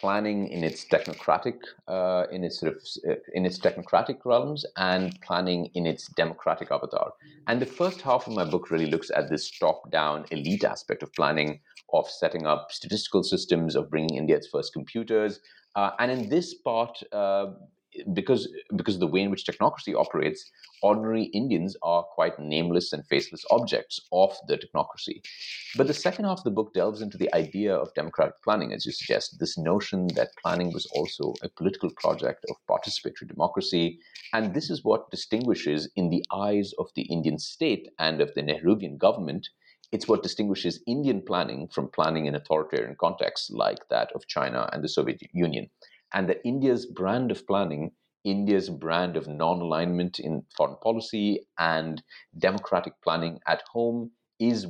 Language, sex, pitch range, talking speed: English, male, 85-120 Hz, 170 wpm